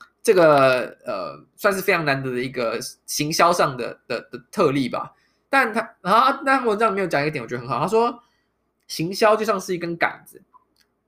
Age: 20-39